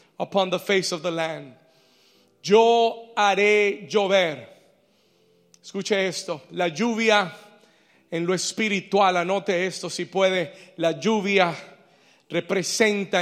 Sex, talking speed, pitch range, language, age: male, 105 wpm, 170-200 Hz, Spanish, 40-59